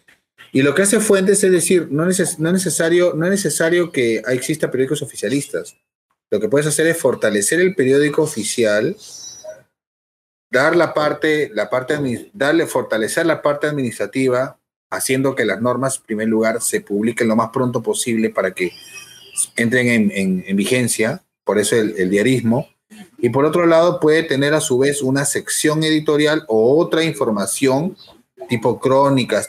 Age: 30-49